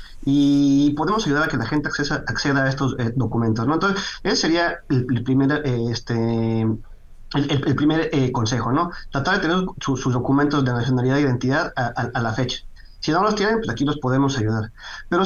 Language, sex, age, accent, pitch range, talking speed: English, male, 30-49, Mexican, 130-170 Hz, 210 wpm